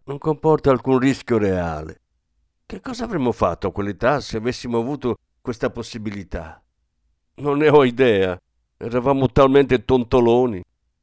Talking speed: 125 wpm